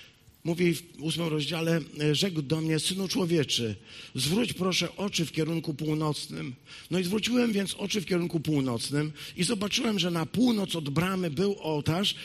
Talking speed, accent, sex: 155 wpm, native, male